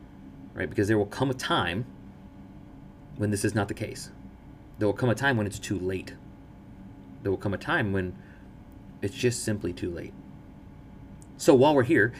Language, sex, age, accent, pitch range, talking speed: English, male, 30-49, American, 95-120 Hz, 180 wpm